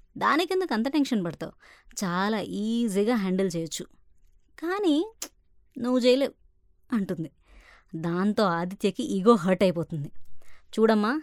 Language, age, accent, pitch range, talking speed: Telugu, 20-39, native, 170-245 Hz, 100 wpm